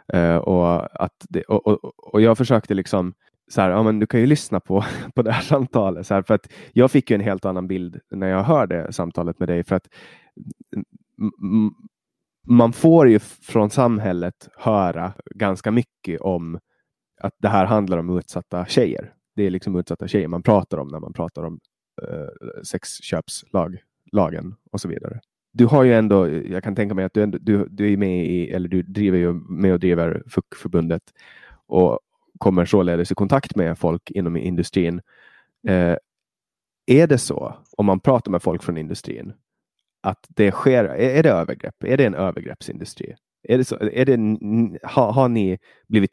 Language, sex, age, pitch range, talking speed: Swedish, male, 20-39, 90-110 Hz, 180 wpm